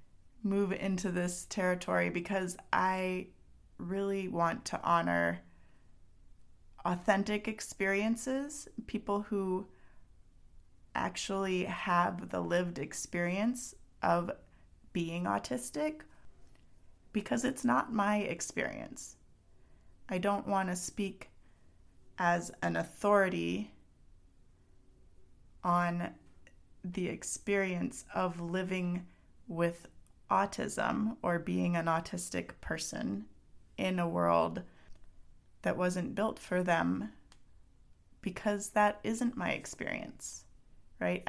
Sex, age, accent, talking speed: female, 30-49, American, 90 wpm